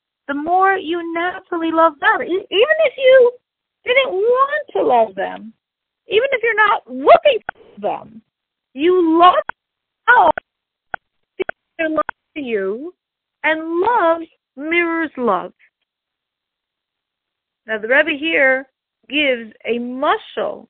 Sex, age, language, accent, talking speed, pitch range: female, 40-59, English, American, 105 wpm, 230-365 Hz